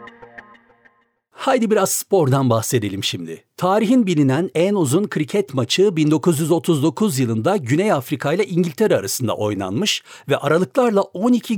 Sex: male